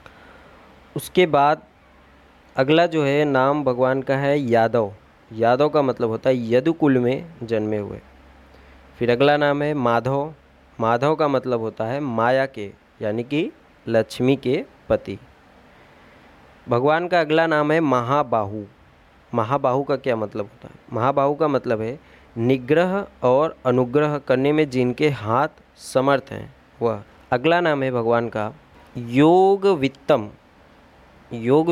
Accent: native